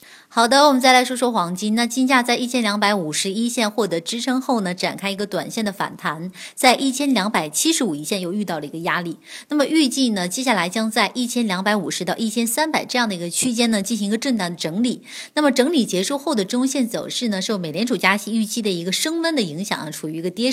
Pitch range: 190-255 Hz